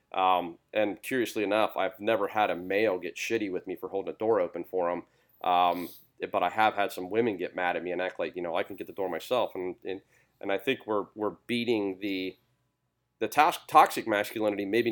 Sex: male